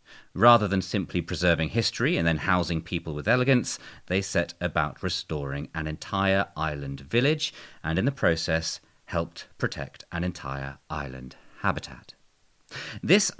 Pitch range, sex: 80-110 Hz, male